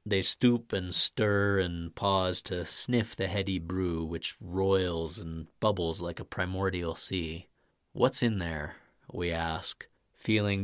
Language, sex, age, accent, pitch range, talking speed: English, male, 30-49, American, 85-105 Hz, 140 wpm